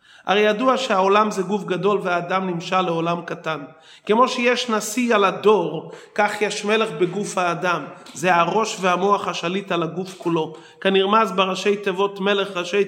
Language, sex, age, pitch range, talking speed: Hebrew, male, 30-49, 190-240 Hz, 150 wpm